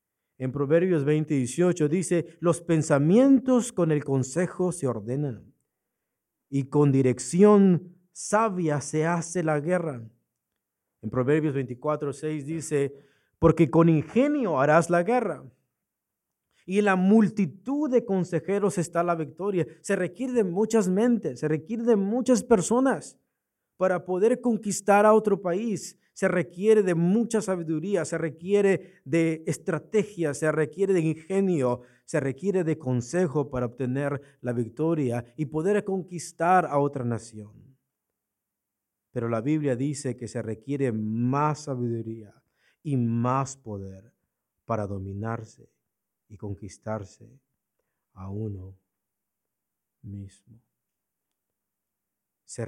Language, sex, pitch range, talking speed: Spanish, male, 125-185 Hz, 115 wpm